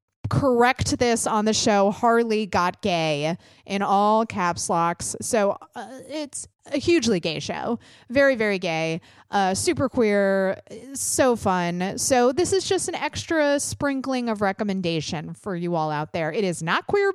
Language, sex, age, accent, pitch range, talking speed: English, female, 30-49, American, 180-260 Hz, 160 wpm